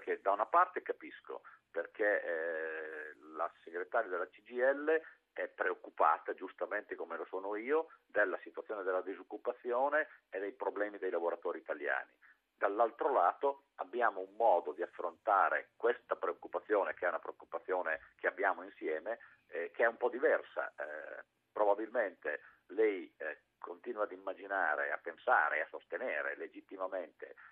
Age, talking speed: 50-69, 135 wpm